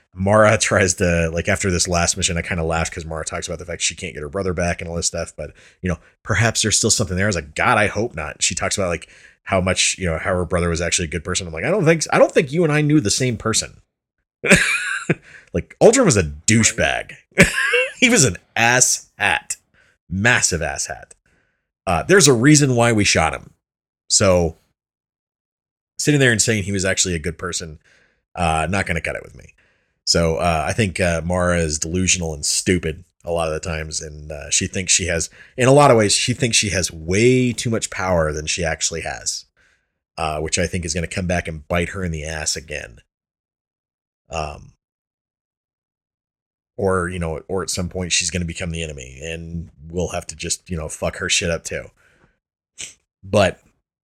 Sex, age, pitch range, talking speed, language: male, 30-49, 80-100 Hz, 215 wpm, English